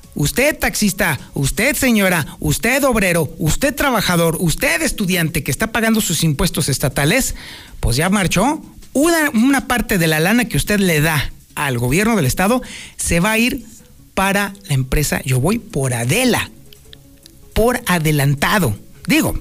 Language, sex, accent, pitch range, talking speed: Spanish, male, Mexican, 160-230 Hz, 145 wpm